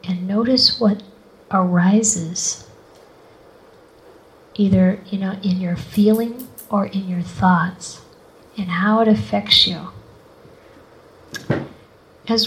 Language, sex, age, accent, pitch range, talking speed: English, female, 40-59, American, 180-215 Hz, 85 wpm